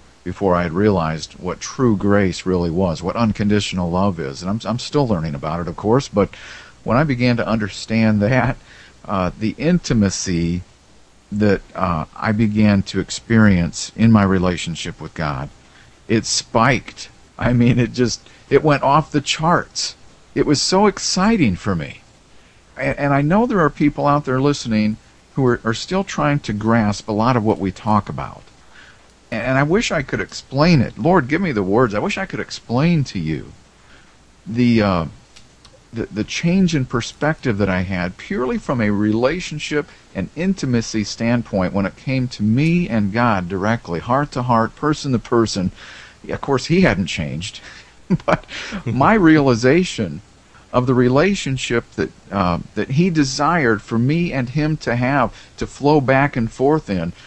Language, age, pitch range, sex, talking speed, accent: English, 50-69, 100-145 Hz, male, 170 wpm, American